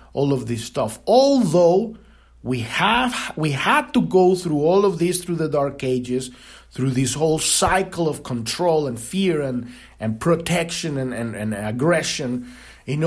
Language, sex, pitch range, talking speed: English, male, 115-175 Hz, 160 wpm